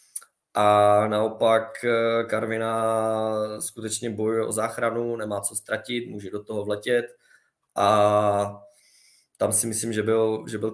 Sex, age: male, 20-39